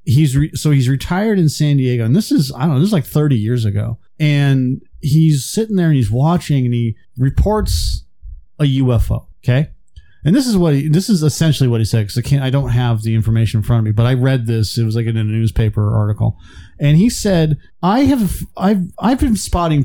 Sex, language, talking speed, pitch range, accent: male, English, 230 wpm, 110-150 Hz, American